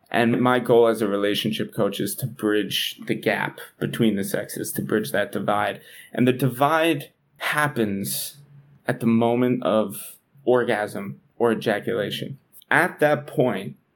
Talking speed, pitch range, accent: 140 wpm, 110-140 Hz, American